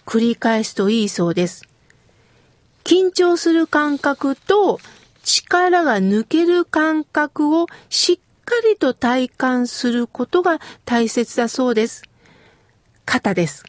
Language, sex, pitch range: Japanese, female, 225-360 Hz